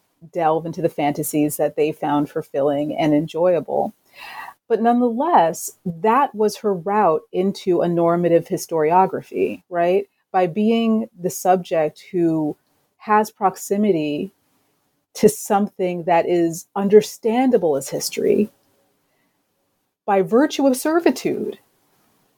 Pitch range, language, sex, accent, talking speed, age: 165-225 Hz, English, female, American, 105 wpm, 30-49